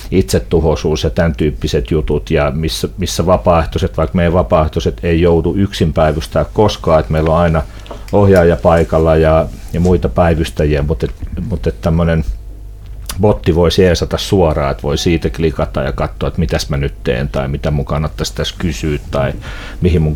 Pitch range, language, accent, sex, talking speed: 80-95 Hz, Finnish, native, male, 160 wpm